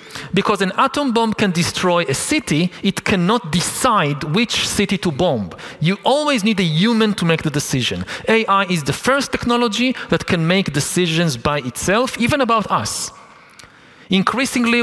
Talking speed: 160 wpm